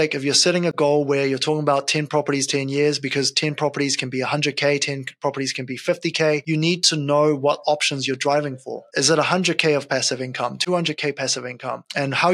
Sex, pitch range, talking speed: male, 140-170 Hz, 215 wpm